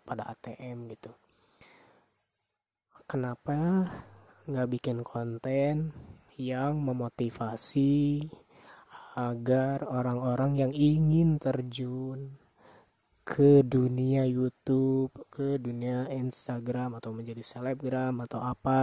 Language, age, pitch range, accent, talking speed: Indonesian, 20-39, 120-150 Hz, native, 80 wpm